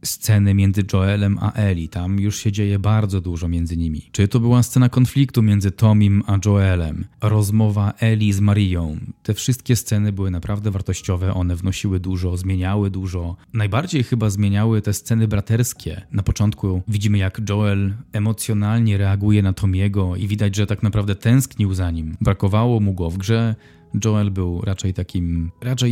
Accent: native